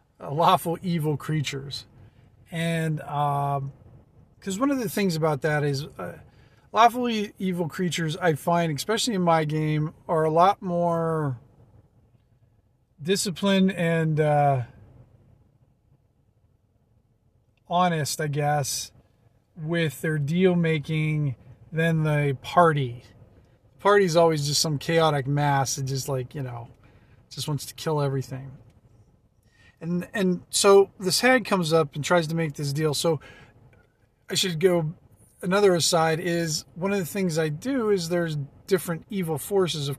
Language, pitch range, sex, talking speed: English, 135-180 Hz, male, 135 wpm